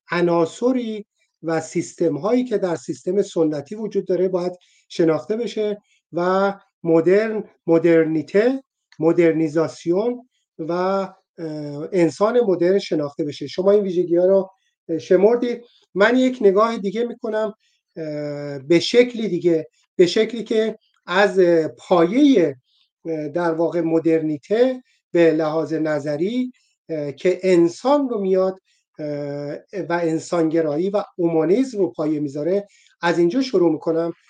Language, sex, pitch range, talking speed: Persian, male, 165-215 Hz, 110 wpm